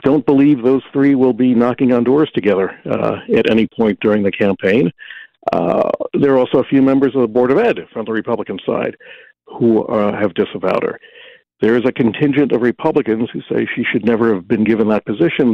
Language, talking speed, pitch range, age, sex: English, 210 wpm, 105-135 Hz, 60-79, male